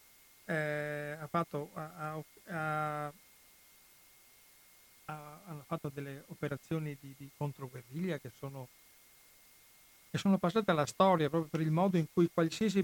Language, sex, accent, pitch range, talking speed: Italian, male, native, 140-160 Hz, 125 wpm